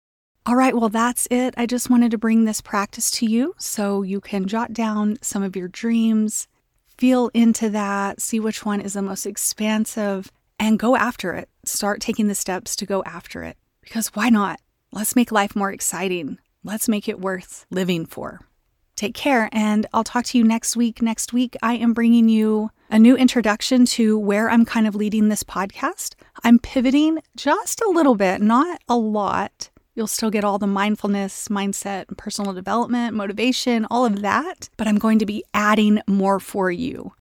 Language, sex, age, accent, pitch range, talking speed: English, female, 30-49, American, 200-240 Hz, 190 wpm